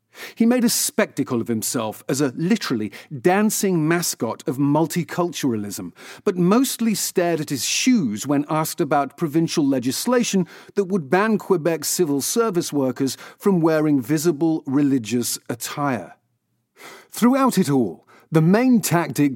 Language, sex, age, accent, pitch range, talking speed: English, male, 40-59, British, 145-195 Hz, 130 wpm